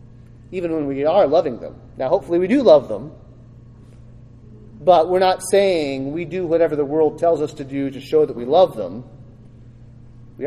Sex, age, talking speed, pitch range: male, 30-49, 185 wpm, 120-160 Hz